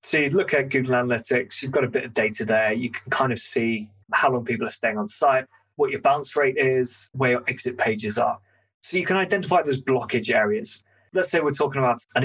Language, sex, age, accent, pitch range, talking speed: English, male, 20-39, British, 120-150 Hz, 235 wpm